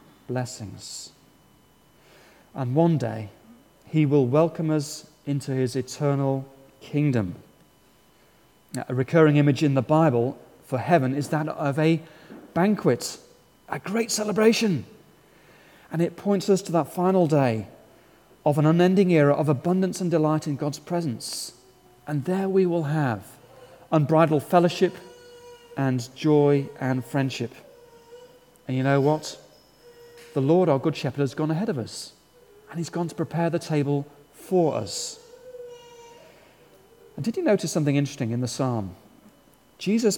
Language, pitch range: English, 135-180 Hz